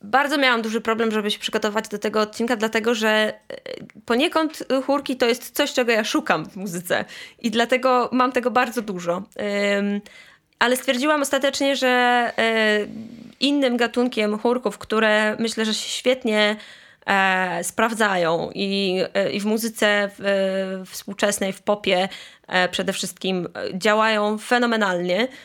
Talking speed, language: 120 wpm, Polish